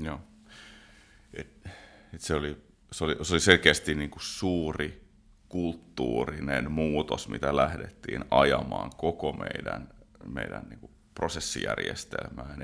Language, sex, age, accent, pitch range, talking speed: Finnish, male, 30-49, native, 75-90 Hz, 105 wpm